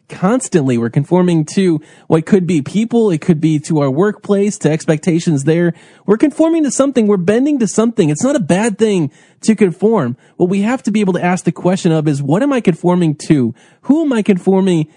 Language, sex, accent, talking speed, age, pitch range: English, male, American, 215 wpm, 20-39, 165-200 Hz